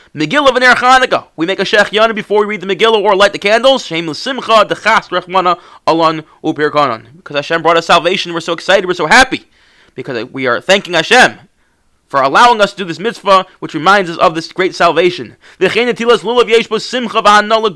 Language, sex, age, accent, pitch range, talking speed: English, male, 30-49, American, 165-225 Hz, 185 wpm